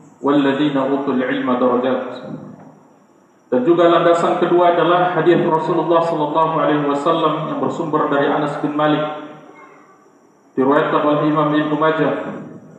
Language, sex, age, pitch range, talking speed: Indonesian, male, 50-69, 150-180 Hz, 95 wpm